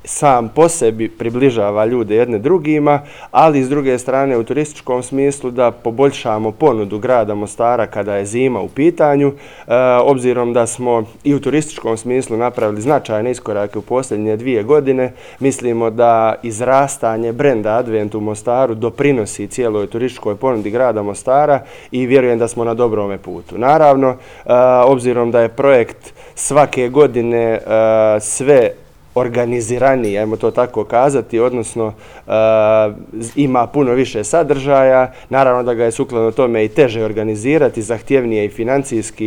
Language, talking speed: Croatian, 135 wpm